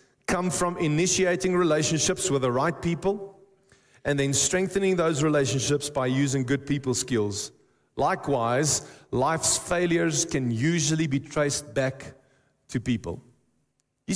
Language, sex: English, male